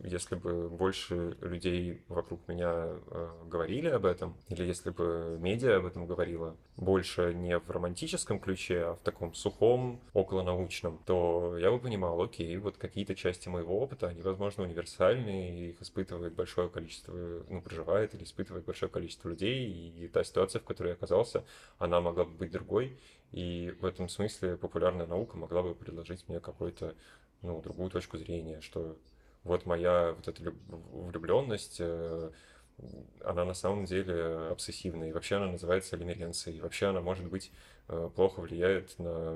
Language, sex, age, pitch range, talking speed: Russian, male, 20-39, 85-95 Hz, 155 wpm